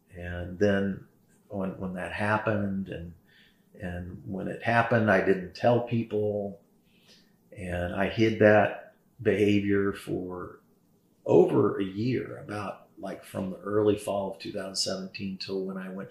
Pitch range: 95-110 Hz